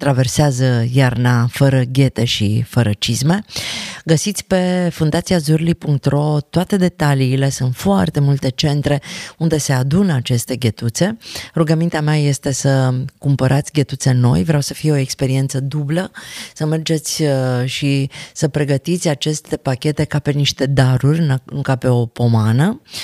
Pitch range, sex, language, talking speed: 130-170 Hz, female, Romanian, 130 wpm